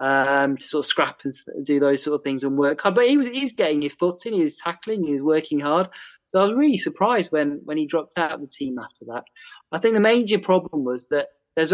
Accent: British